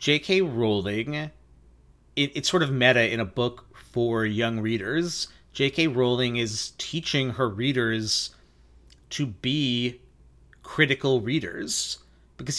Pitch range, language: 110-140 Hz, English